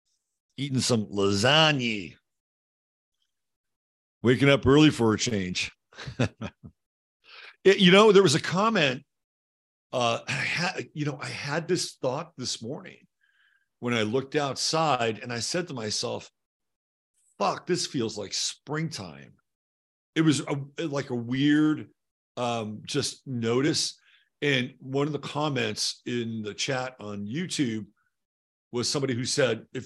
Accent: American